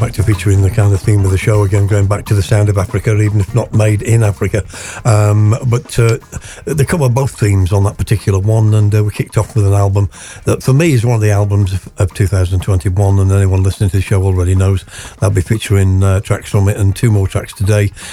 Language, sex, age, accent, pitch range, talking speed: English, male, 60-79, British, 95-115 Hz, 240 wpm